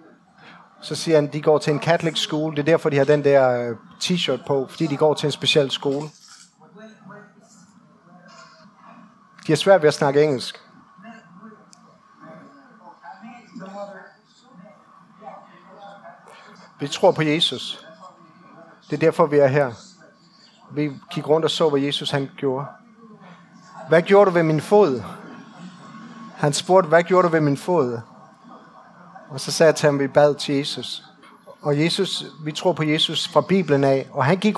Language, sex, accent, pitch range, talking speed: Danish, male, native, 145-195 Hz, 155 wpm